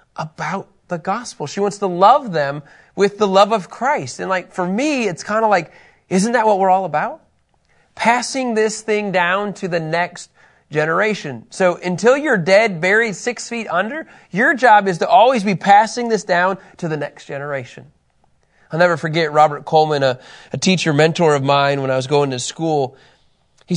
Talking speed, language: 185 wpm, English